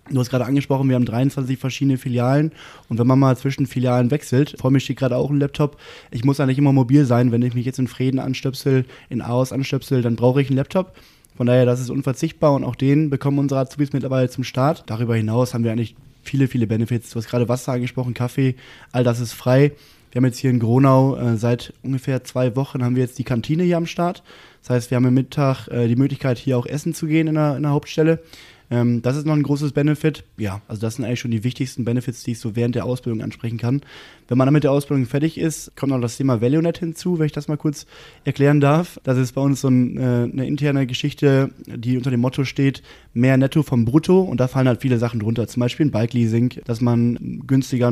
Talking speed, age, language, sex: 235 wpm, 20-39, German, male